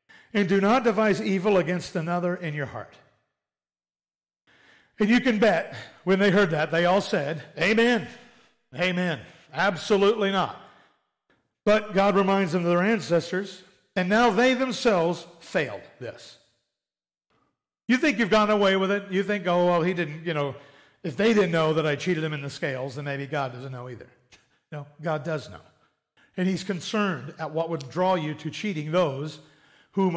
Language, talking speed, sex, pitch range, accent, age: English, 170 wpm, male, 165-220 Hz, American, 50-69